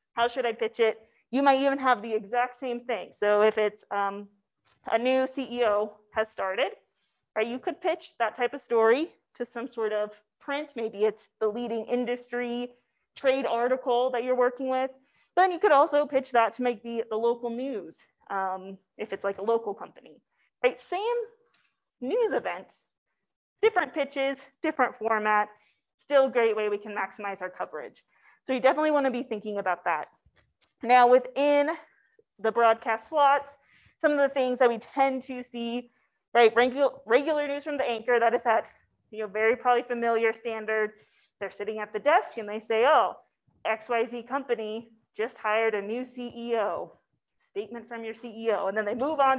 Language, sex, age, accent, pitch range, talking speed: English, female, 30-49, American, 220-270 Hz, 175 wpm